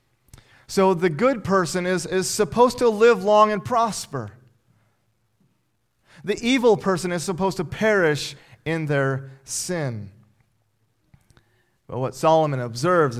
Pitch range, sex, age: 130-180 Hz, male, 30-49